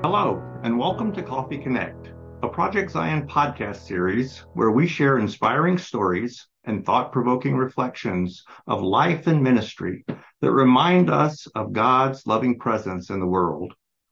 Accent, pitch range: American, 100-140 Hz